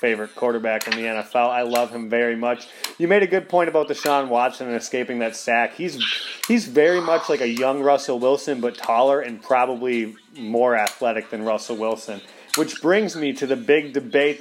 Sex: male